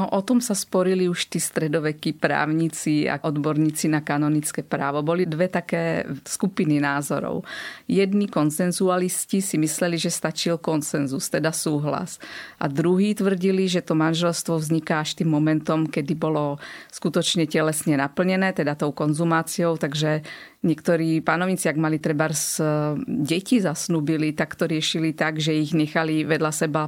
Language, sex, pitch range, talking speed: Slovak, female, 155-175 Hz, 140 wpm